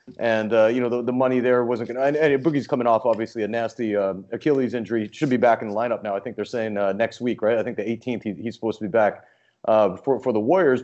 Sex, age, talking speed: male, 30-49, 295 wpm